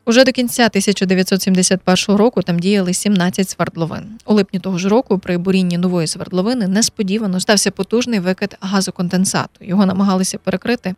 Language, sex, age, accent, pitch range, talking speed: Ukrainian, female, 20-39, native, 185-210 Hz, 140 wpm